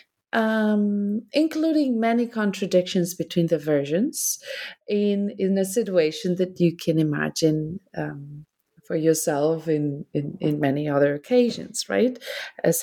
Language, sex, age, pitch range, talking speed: English, female, 30-49, 165-220 Hz, 115 wpm